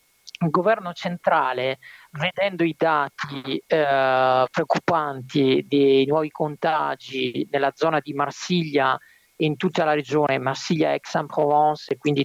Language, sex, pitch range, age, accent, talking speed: Italian, male, 140-180 Hz, 50-69, native, 115 wpm